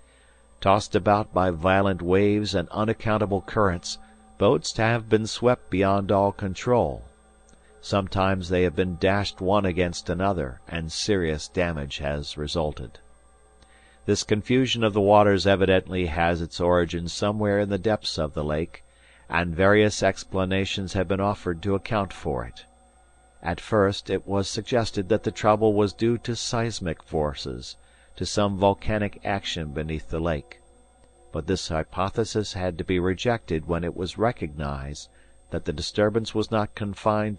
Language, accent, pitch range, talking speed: English, American, 85-105 Hz, 145 wpm